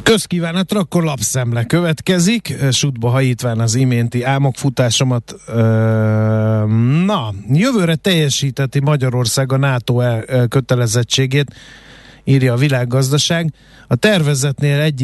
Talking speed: 90 wpm